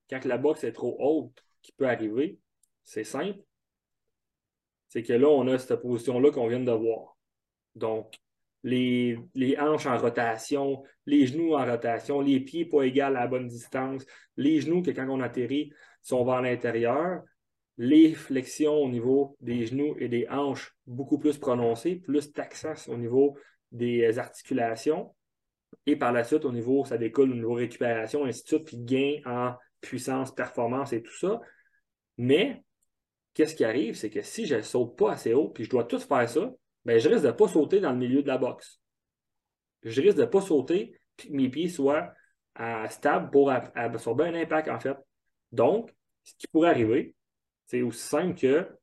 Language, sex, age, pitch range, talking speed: French, male, 30-49, 120-150 Hz, 180 wpm